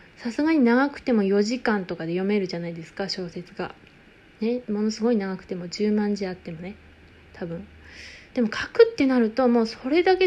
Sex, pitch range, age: female, 200-260 Hz, 20-39